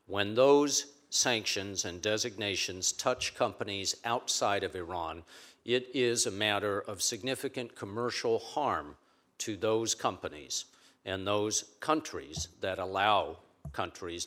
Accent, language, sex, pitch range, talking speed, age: American, English, male, 95-115 Hz, 115 wpm, 50-69